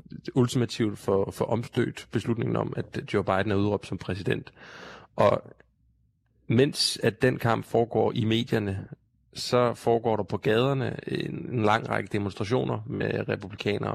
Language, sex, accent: Danish, male, native